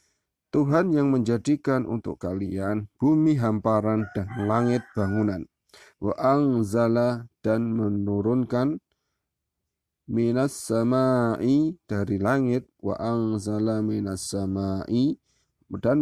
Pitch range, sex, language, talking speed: 105-125 Hz, male, Indonesian, 80 wpm